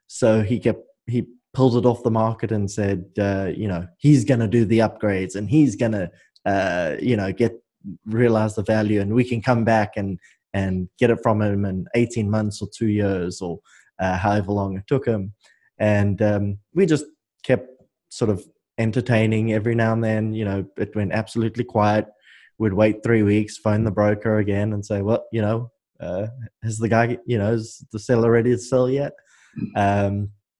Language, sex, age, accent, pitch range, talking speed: English, male, 20-39, Australian, 100-120 Hz, 195 wpm